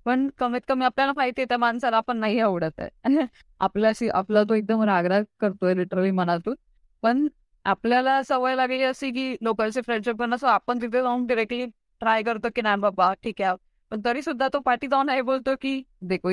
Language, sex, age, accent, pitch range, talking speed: Marathi, female, 20-39, native, 190-240 Hz, 175 wpm